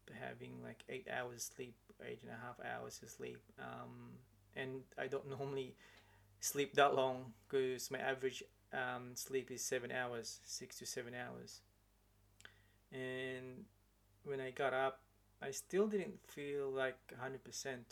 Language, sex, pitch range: English, male, 105-135 Hz